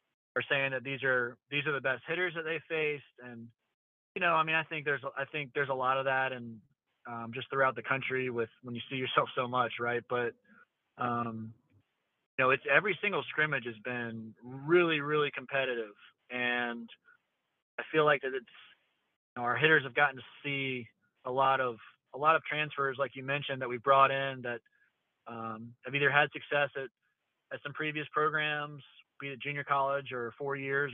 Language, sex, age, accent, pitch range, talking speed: English, male, 30-49, American, 120-140 Hz, 200 wpm